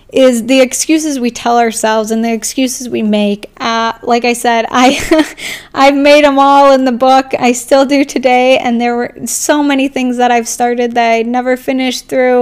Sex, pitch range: female, 235-260 Hz